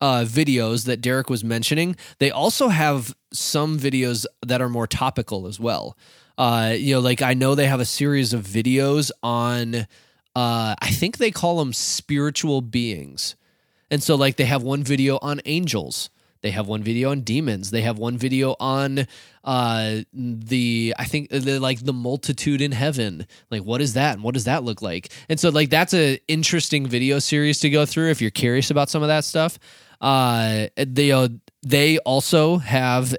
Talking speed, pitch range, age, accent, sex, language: 185 wpm, 120-145 Hz, 20-39, American, male, English